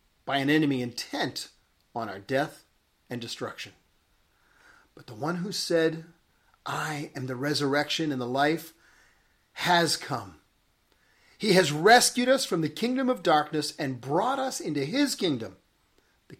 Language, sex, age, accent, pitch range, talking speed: English, male, 50-69, American, 115-170 Hz, 145 wpm